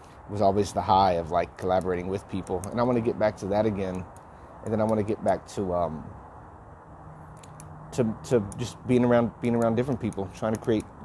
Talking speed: 200 wpm